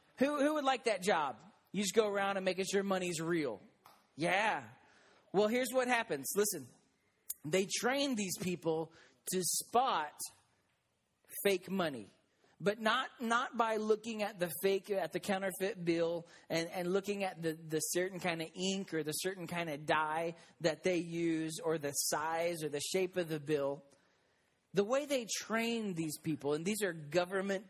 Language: English